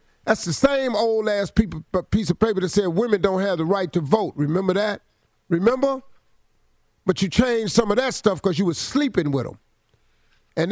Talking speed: 190 wpm